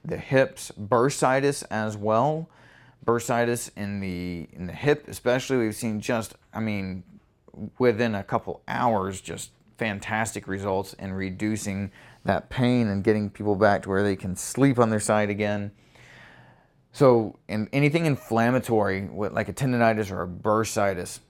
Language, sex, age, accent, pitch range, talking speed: English, male, 30-49, American, 100-125 Hz, 145 wpm